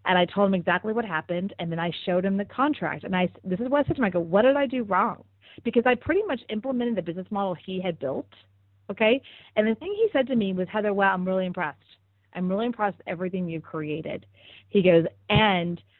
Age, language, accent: 30-49, English, American